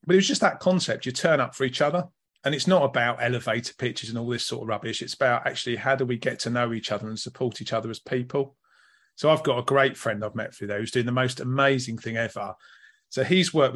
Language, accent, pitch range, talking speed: English, British, 120-145 Hz, 265 wpm